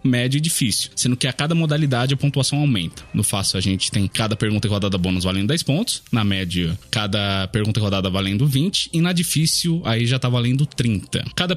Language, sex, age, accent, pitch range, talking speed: Portuguese, male, 20-39, Brazilian, 115-150 Hz, 215 wpm